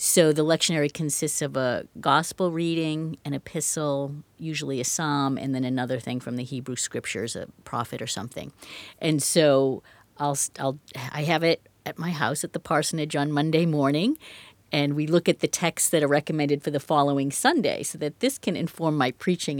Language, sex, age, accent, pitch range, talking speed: English, female, 50-69, American, 135-160 Hz, 185 wpm